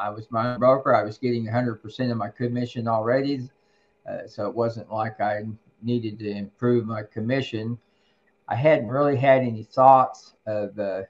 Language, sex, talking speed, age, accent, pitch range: English, male, 175 wpm, 50-69, American, 105-125 Hz